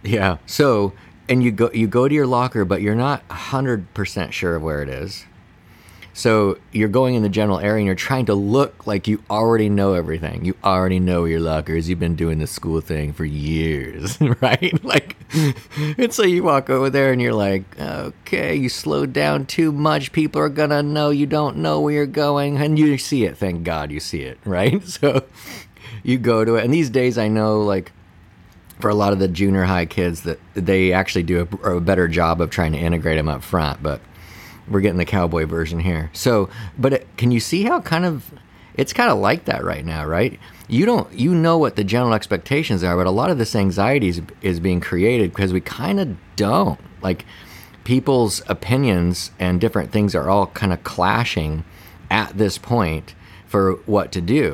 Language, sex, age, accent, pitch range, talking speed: English, male, 30-49, American, 90-125 Hz, 205 wpm